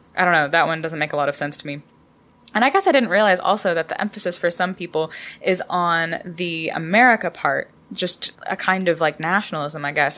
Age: 10-29